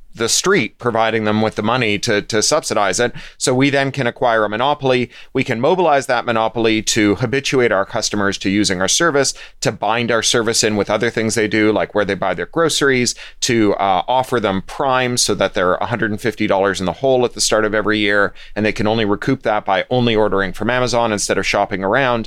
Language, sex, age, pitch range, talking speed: English, male, 30-49, 105-130 Hz, 215 wpm